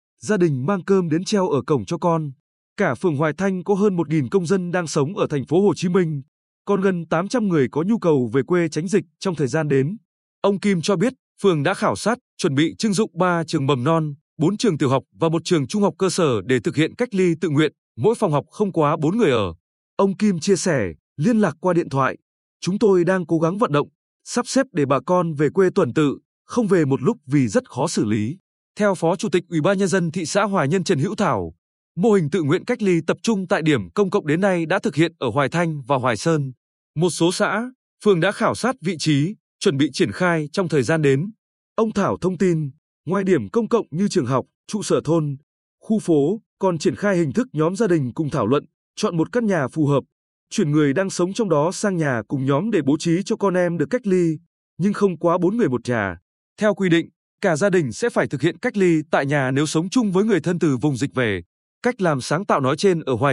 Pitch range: 150-200 Hz